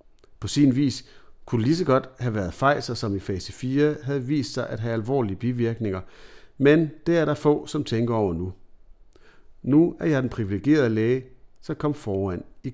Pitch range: 110-145 Hz